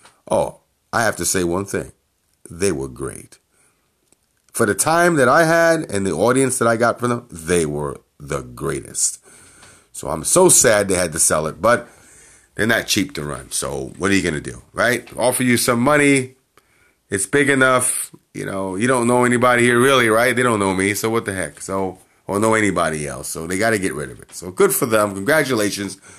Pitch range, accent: 95-135 Hz, American